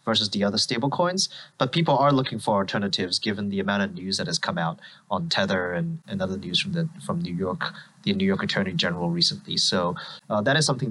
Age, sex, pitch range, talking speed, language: 30-49, male, 110-155 Hz, 230 wpm, English